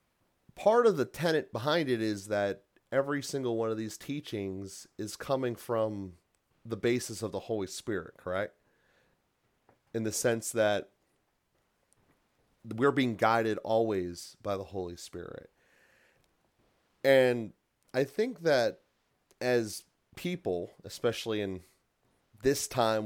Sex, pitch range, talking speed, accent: male, 100-120 Hz, 120 wpm, American